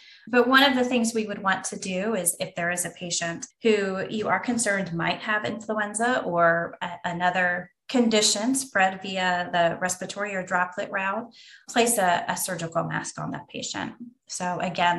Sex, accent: female, American